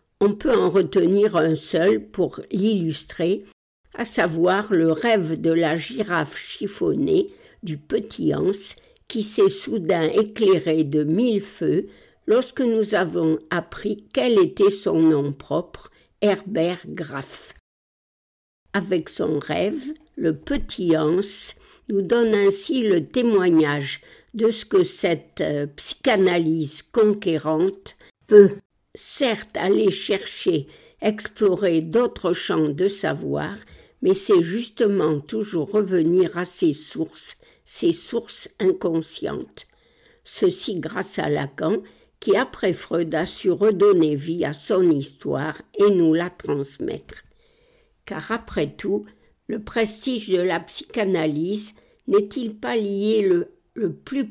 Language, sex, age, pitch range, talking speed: French, female, 60-79, 165-245 Hz, 115 wpm